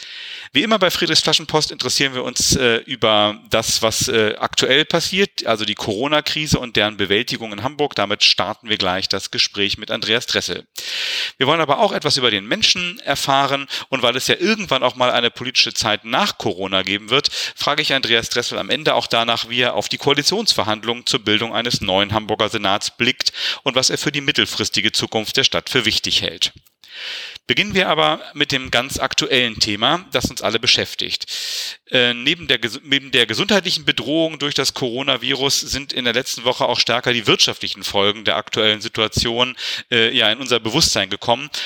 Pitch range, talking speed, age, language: 115-145 Hz, 180 wpm, 40-59, German